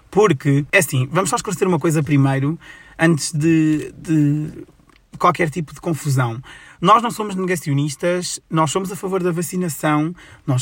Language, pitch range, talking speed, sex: Portuguese, 145-180 Hz, 155 wpm, male